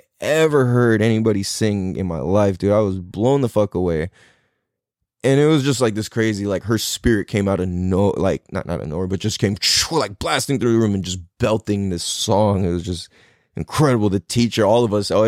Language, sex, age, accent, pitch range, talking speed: English, male, 20-39, American, 95-120 Hz, 220 wpm